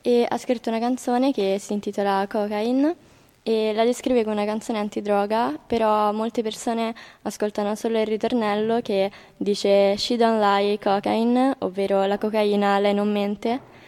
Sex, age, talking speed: female, 20-39, 150 wpm